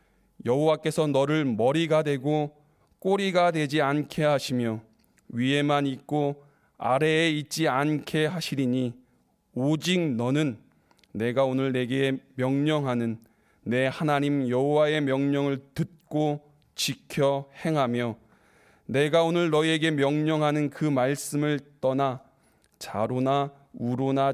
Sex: male